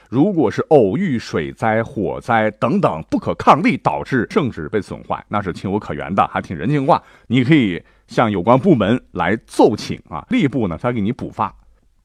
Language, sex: Chinese, male